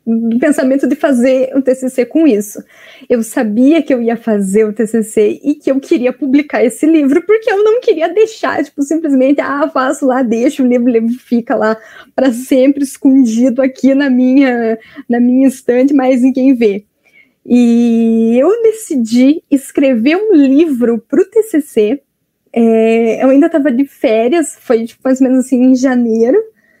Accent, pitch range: Brazilian, 230-300 Hz